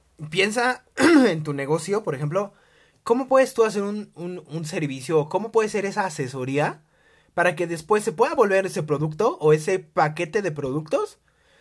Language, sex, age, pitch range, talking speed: Spanish, male, 20-39, 150-215 Hz, 170 wpm